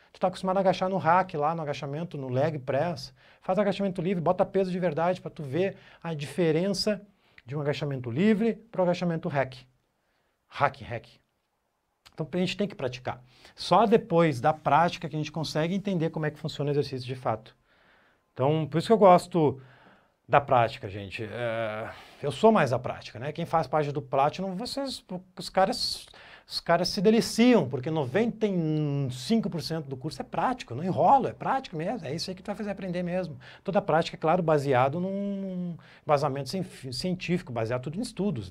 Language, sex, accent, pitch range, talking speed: Portuguese, male, Brazilian, 140-190 Hz, 185 wpm